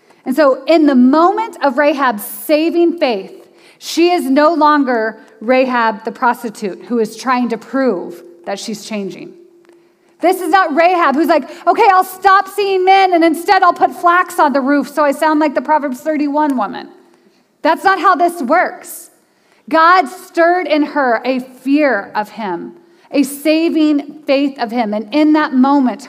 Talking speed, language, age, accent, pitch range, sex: 170 wpm, English, 30-49, American, 240-325 Hz, female